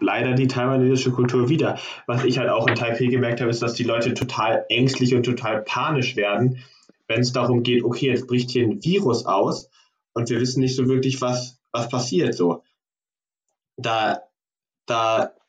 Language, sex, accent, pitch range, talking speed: German, male, German, 110-125 Hz, 180 wpm